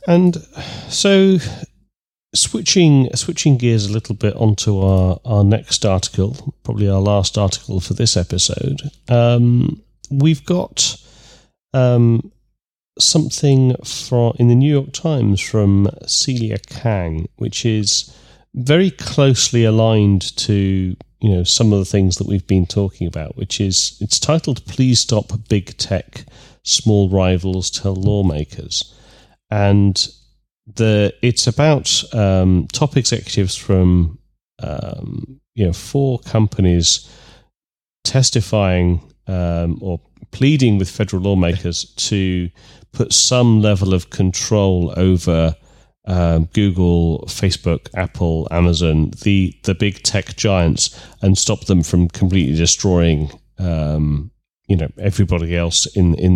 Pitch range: 95-125 Hz